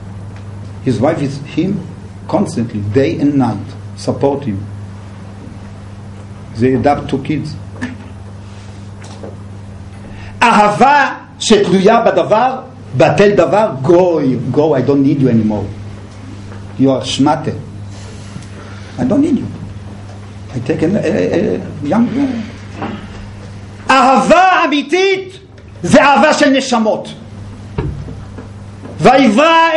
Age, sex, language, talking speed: 50-69, male, English, 95 wpm